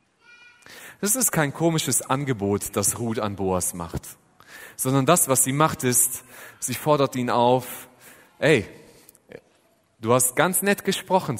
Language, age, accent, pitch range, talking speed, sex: German, 30-49, German, 115-150 Hz, 135 wpm, male